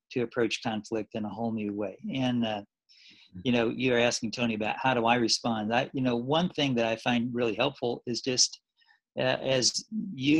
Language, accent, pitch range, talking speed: English, American, 115-135 Hz, 195 wpm